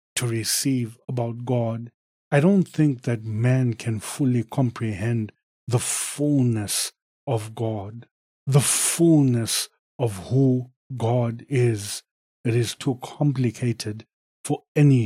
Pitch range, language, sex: 115-140 Hz, English, male